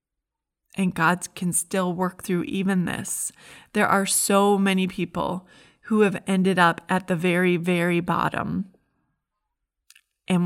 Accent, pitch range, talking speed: American, 180-215 Hz, 130 wpm